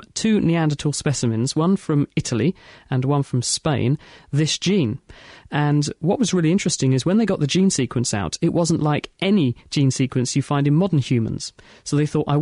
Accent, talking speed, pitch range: British, 195 wpm, 130-155 Hz